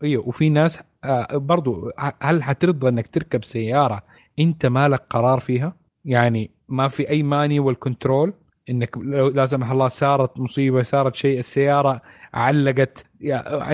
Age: 30-49